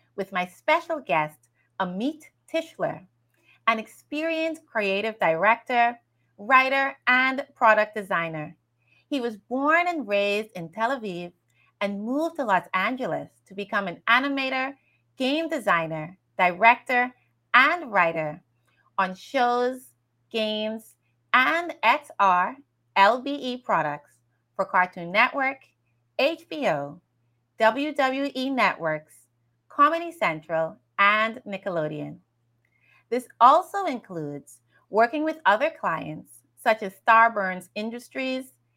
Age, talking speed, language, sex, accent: 30-49, 100 wpm, English, female, American